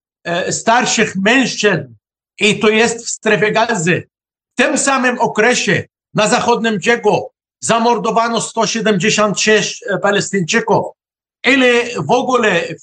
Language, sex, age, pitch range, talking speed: Polish, male, 50-69, 200-235 Hz, 105 wpm